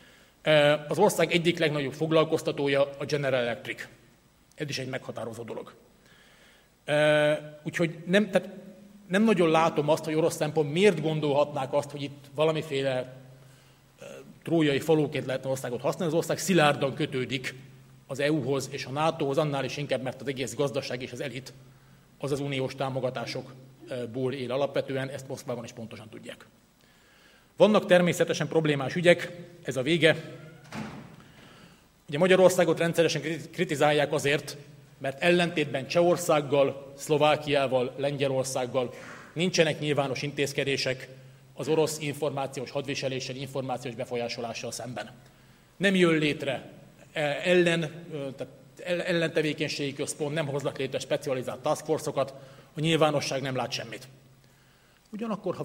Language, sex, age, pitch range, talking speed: Hungarian, male, 30-49, 135-160 Hz, 120 wpm